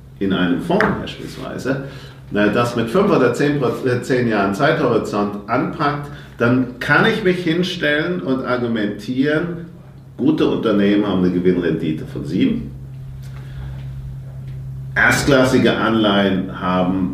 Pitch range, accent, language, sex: 100-135 Hz, German, German, male